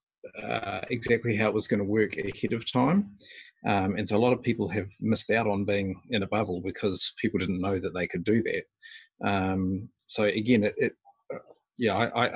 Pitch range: 95-115 Hz